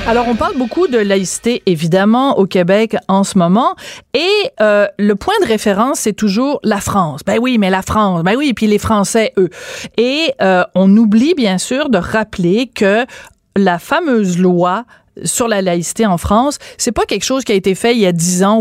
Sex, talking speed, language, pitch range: female, 205 wpm, French, 190-235 Hz